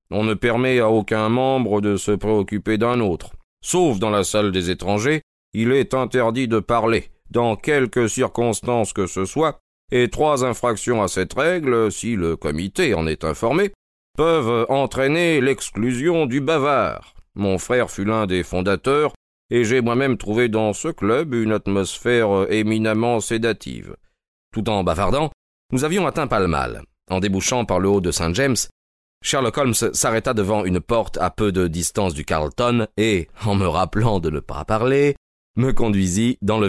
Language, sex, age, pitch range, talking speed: French, male, 40-59, 90-120 Hz, 165 wpm